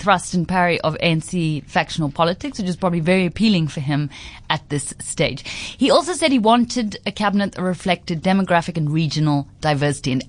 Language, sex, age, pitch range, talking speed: English, female, 30-49, 155-205 Hz, 180 wpm